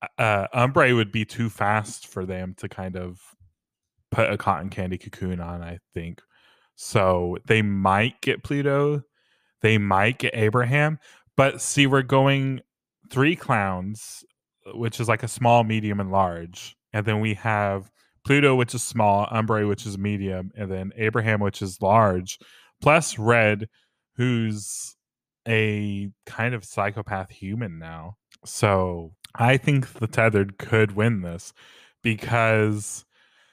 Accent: American